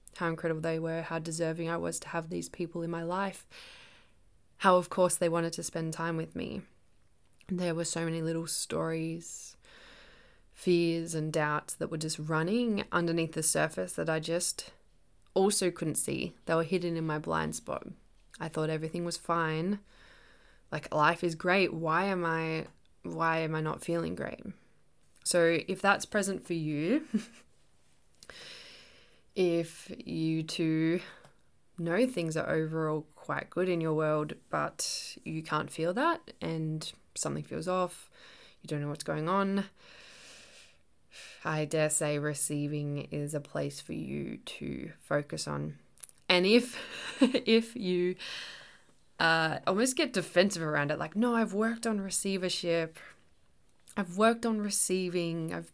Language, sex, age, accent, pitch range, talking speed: English, female, 20-39, Australian, 160-190 Hz, 150 wpm